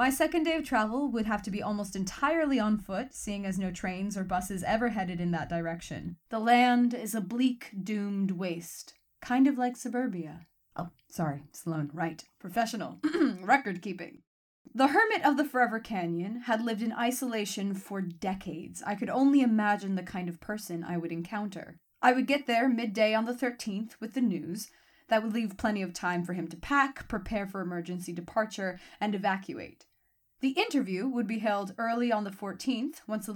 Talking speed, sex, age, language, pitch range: 185 wpm, female, 20-39, English, 175-245 Hz